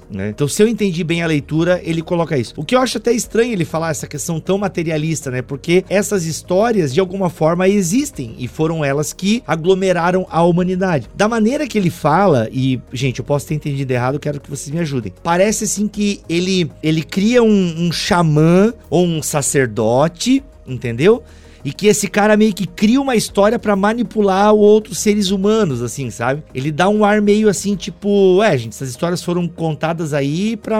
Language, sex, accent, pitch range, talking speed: Portuguese, male, Brazilian, 145-195 Hz, 195 wpm